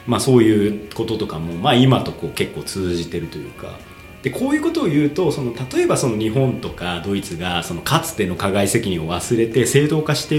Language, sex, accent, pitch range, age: Japanese, male, native, 95-150 Hz, 40-59